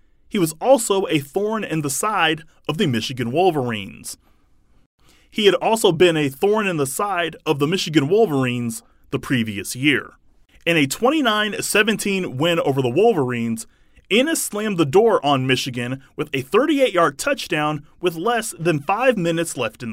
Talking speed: 155 wpm